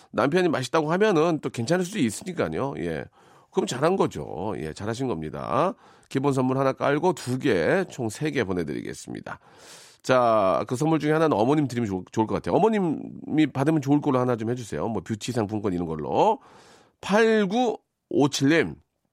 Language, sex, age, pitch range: Korean, male, 40-59, 110-155 Hz